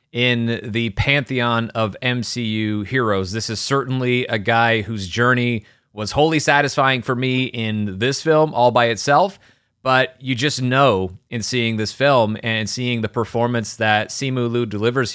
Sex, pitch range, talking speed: male, 105-125 Hz, 160 wpm